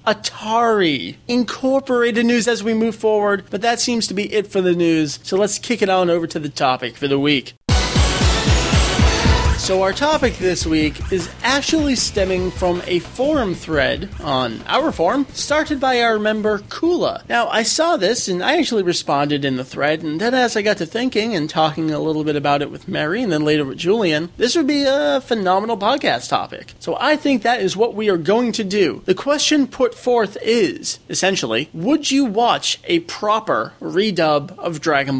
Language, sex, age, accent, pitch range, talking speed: English, male, 30-49, American, 155-230 Hz, 190 wpm